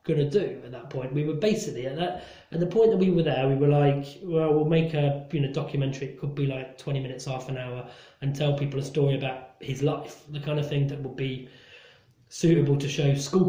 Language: English